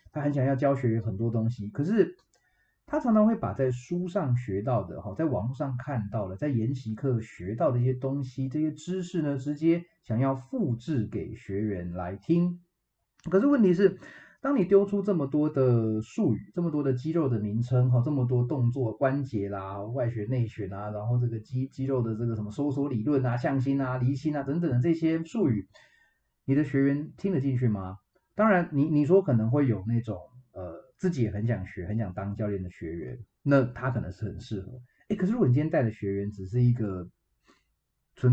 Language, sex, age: Chinese, male, 30-49